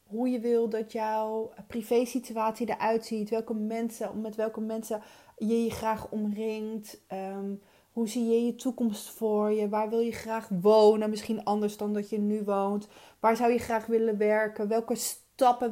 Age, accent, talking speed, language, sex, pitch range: 30-49, Dutch, 170 wpm, Dutch, female, 205-230 Hz